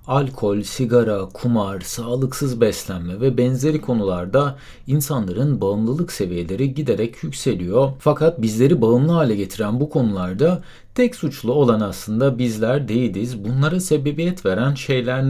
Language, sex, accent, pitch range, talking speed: Turkish, male, native, 110-155 Hz, 120 wpm